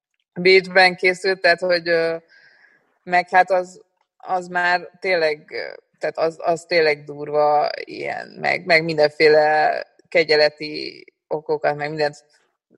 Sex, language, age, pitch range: female, Hungarian, 20-39, 155-185 Hz